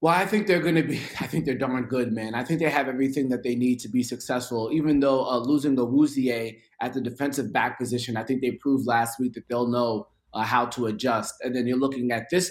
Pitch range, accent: 125-155 Hz, American